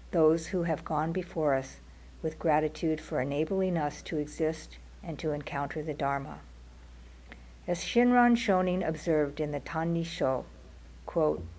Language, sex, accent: English, female, American